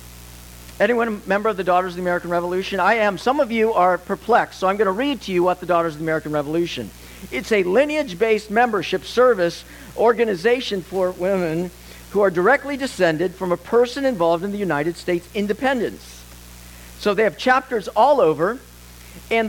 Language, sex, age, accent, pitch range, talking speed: English, male, 50-69, American, 160-220 Hz, 180 wpm